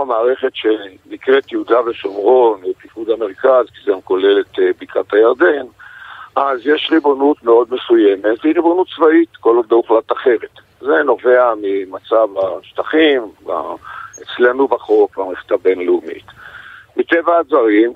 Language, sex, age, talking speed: Hebrew, male, 50-69, 120 wpm